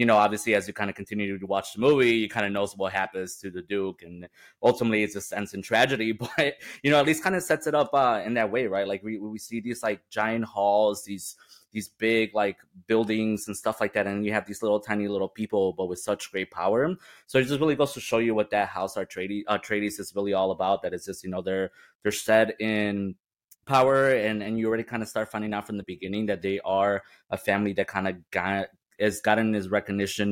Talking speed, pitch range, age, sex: 250 wpm, 95-110 Hz, 20-39, male